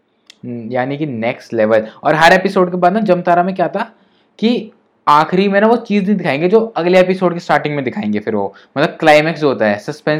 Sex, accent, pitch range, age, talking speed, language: male, native, 130-165 Hz, 20-39, 200 wpm, Hindi